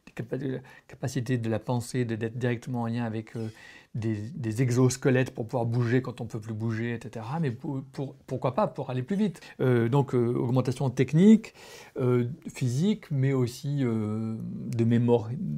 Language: French